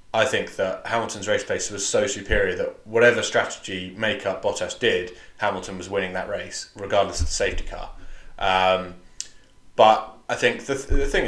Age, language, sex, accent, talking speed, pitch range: 20-39, English, male, British, 175 wpm, 95-115 Hz